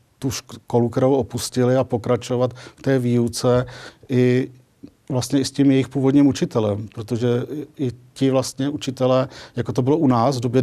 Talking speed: 155 wpm